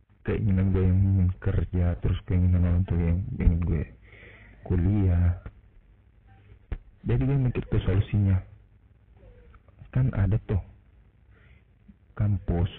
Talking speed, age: 105 wpm, 50-69